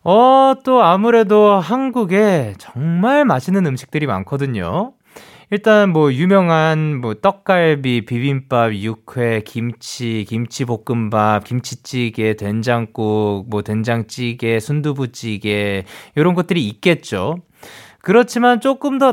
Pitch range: 115-175 Hz